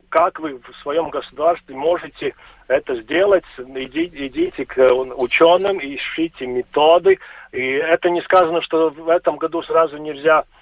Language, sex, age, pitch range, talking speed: Russian, male, 40-59, 140-220 Hz, 130 wpm